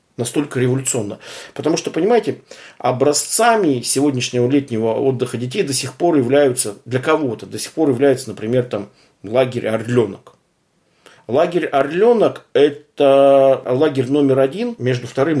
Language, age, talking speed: Russian, 50-69, 125 wpm